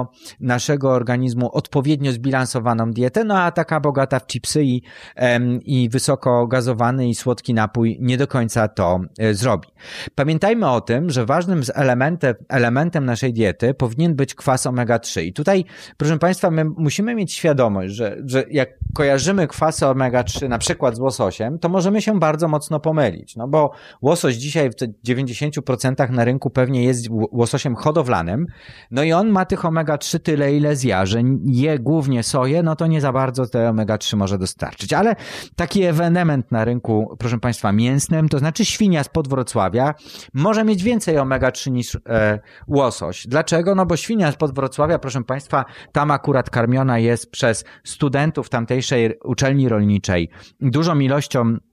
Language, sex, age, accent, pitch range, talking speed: Polish, male, 30-49, native, 120-155 Hz, 155 wpm